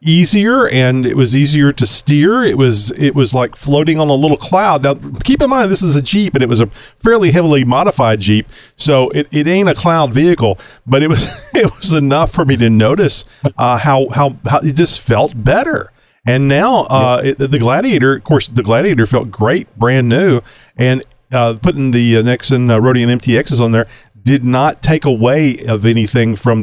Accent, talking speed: American, 205 wpm